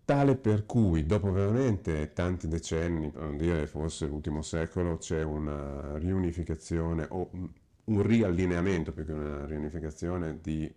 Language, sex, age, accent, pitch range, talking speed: Italian, male, 50-69, native, 75-110 Hz, 135 wpm